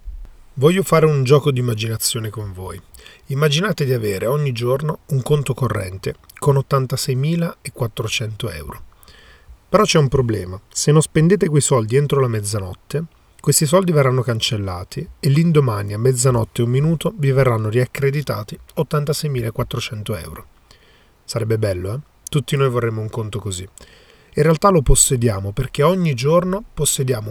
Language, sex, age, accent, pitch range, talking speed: Italian, male, 40-59, native, 110-145 Hz, 140 wpm